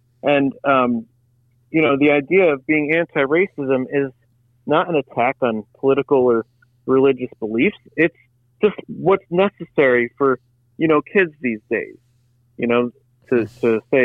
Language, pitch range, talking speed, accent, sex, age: English, 120-155 Hz, 140 wpm, American, male, 40-59